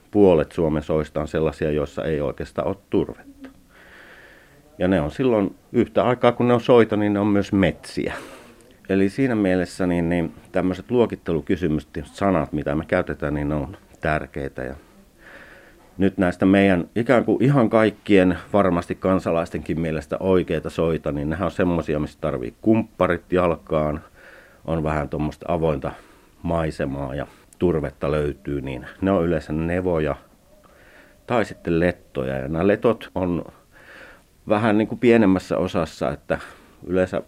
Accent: native